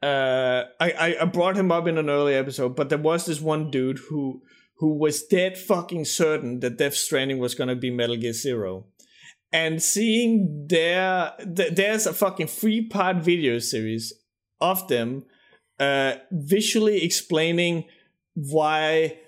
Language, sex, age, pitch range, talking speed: English, male, 30-49, 150-180 Hz, 155 wpm